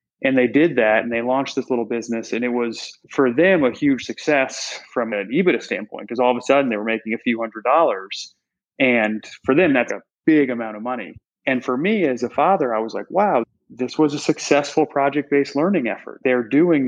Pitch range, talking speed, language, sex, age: 120-140 Hz, 220 wpm, English, male, 30-49